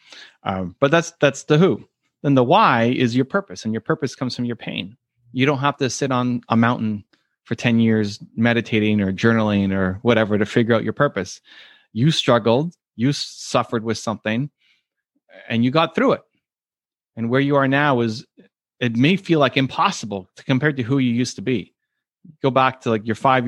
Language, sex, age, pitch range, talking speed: English, male, 30-49, 110-130 Hz, 195 wpm